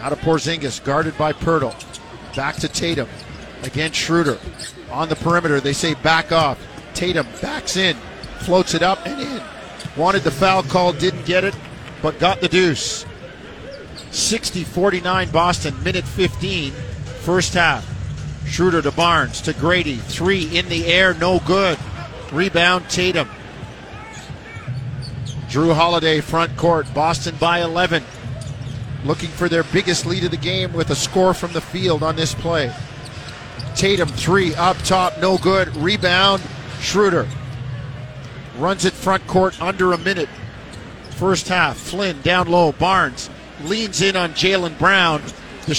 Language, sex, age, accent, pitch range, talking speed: English, male, 50-69, American, 140-180 Hz, 140 wpm